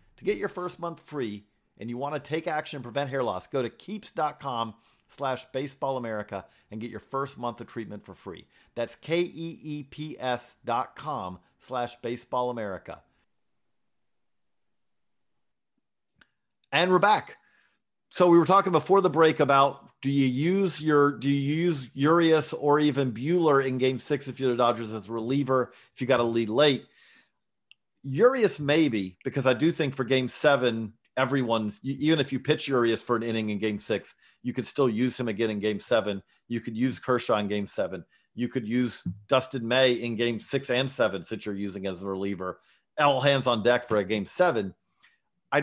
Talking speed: 180 wpm